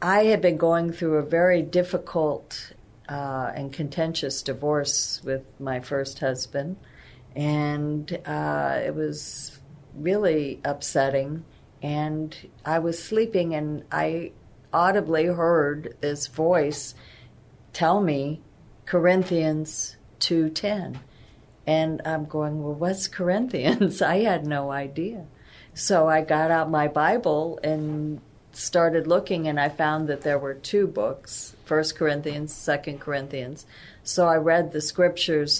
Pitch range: 140-160 Hz